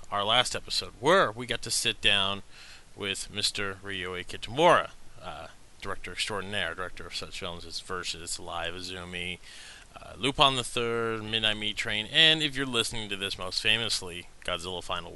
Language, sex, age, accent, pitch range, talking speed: English, male, 30-49, American, 95-115 Hz, 160 wpm